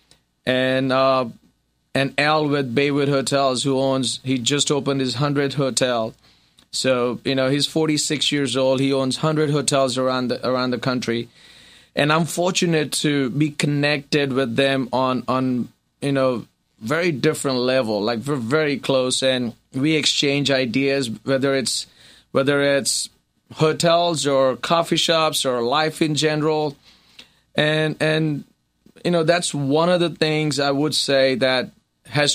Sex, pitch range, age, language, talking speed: male, 130-155 Hz, 30-49, English, 150 wpm